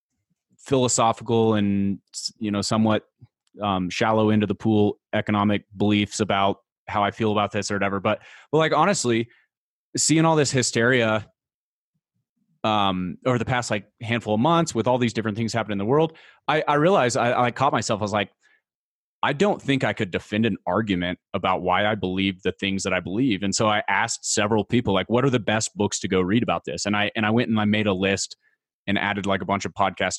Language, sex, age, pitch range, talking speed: English, male, 30-49, 100-125 Hz, 210 wpm